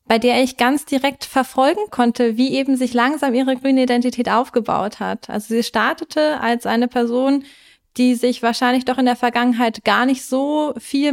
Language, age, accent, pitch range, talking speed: German, 30-49, German, 225-265 Hz, 180 wpm